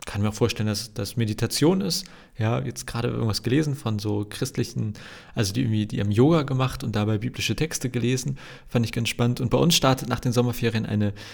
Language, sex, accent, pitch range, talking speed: German, male, German, 110-130 Hz, 210 wpm